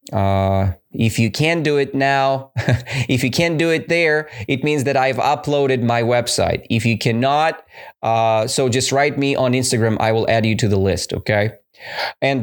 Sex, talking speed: male, 190 wpm